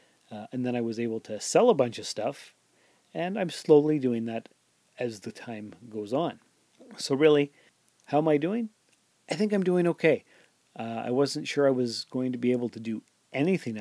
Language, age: English, 40-59